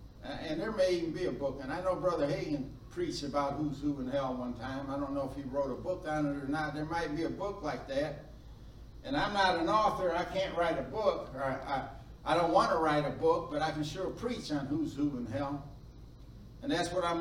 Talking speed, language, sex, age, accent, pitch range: 245 wpm, English, male, 60-79, American, 145-195 Hz